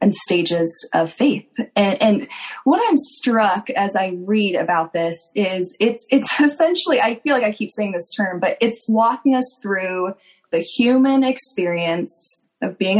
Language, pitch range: English, 180-245 Hz